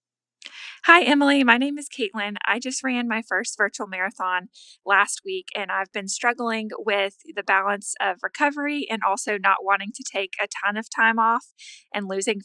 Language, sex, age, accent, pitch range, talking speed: English, female, 20-39, American, 170-230 Hz, 180 wpm